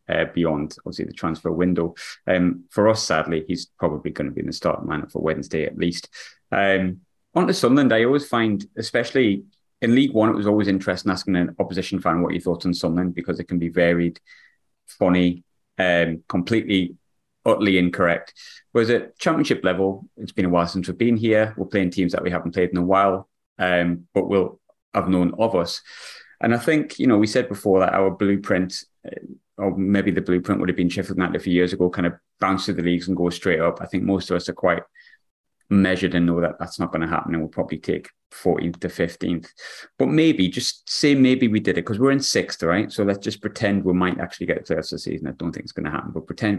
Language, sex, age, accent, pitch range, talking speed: English, male, 30-49, British, 90-105 Hz, 230 wpm